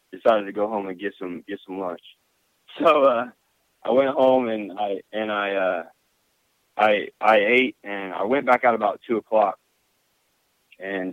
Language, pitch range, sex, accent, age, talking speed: English, 95-120 Hz, male, American, 20-39, 175 wpm